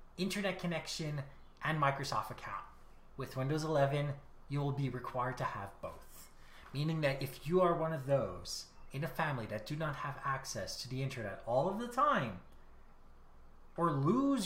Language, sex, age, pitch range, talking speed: English, male, 30-49, 130-195 Hz, 165 wpm